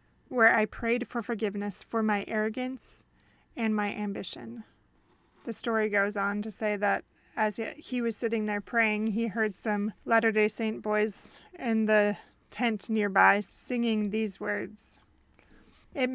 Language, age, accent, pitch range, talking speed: English, 20-39, American, 205-230 Hz, 140 wpm